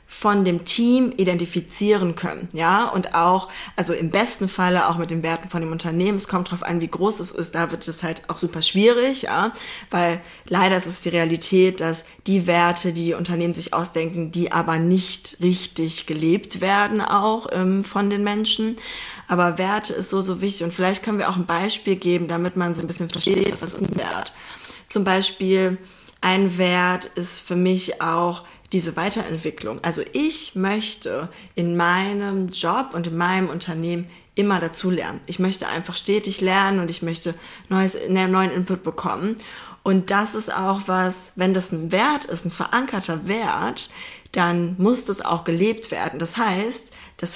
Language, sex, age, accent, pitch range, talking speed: German, female, 20-39, German, 170-200 Hz, 180 wpm